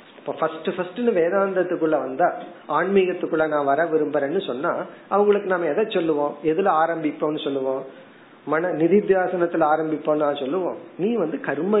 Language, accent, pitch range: Tamil, native, 140-195 Hz